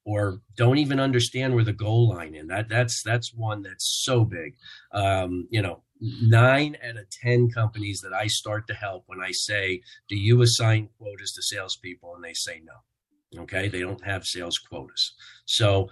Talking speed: 185 wpm